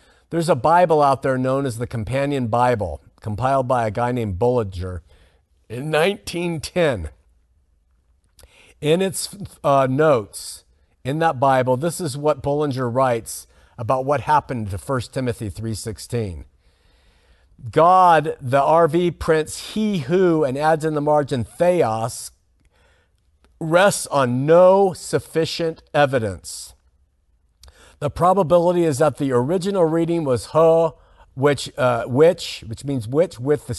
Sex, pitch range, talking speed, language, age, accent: male, 115-165 Hz, 125 wpm, English, 50-69, American